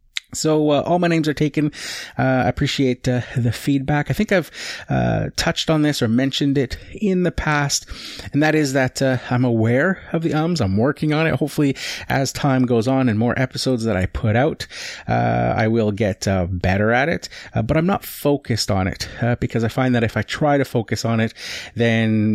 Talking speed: 210 wpm